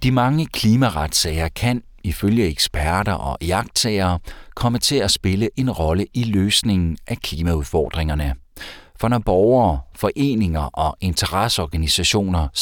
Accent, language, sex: native, Danish, male